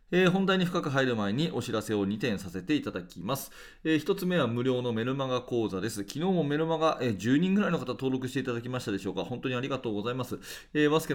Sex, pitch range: male, 105-150 Hz